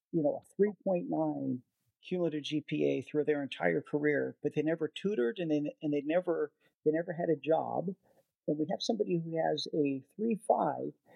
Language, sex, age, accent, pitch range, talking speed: English, male, 50-69, American, 145-185 Hz, 190 wpm